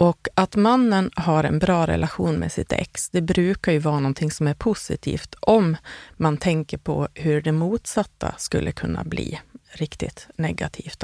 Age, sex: 30-49, female